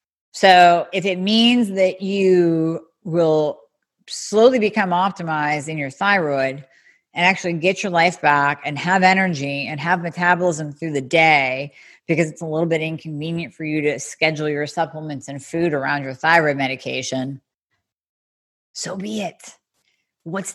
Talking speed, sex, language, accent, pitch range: 145 wpm, female, English, American, 150-190 Hz